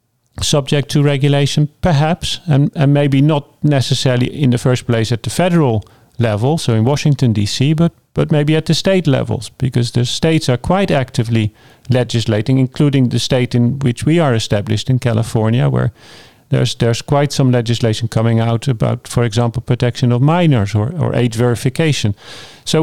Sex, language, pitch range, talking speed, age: male, English, 115-145 Hz, 170 wpm, 40-59